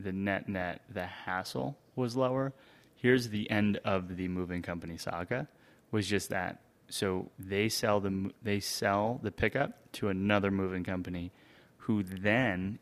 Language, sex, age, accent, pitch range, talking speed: English, male, 30-49, American, 95-105 Hz, 145 wpm